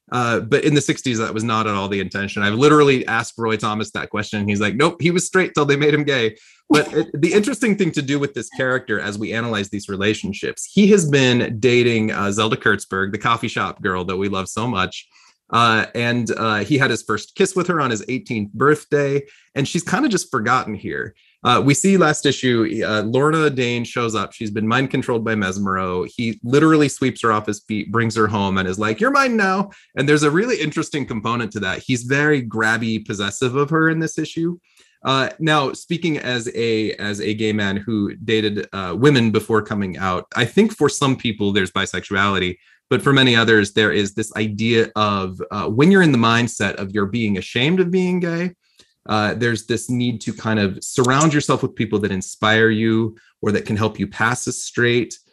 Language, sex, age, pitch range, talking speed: English, male, 30-49, 105-145 Hz, 215 wpm